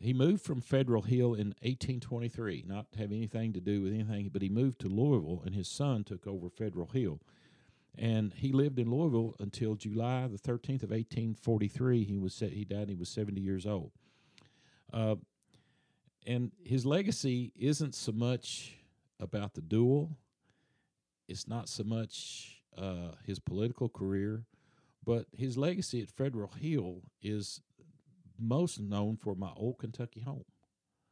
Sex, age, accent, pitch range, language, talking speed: male, 50-69, American, 100-125 Hz, English, 150 wpm